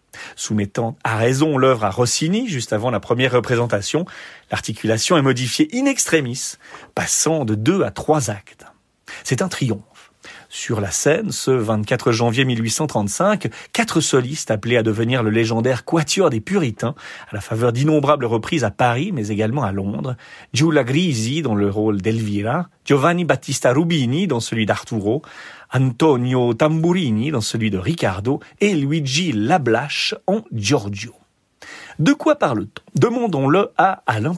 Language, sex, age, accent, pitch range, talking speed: French, male, 40-59, French, 110-155 Hz, 145 wpm